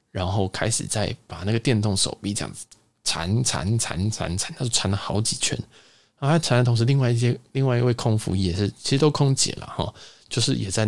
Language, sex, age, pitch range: Chinese, male, 20-39, 95-125 Hz